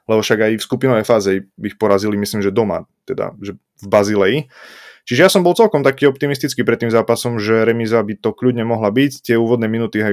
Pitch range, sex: 105-120 Hz, male